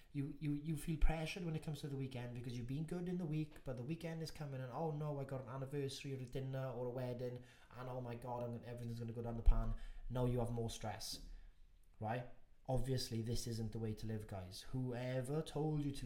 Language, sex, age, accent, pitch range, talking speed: English, male, 20-39, British, 120-150 Hz, 240 wpm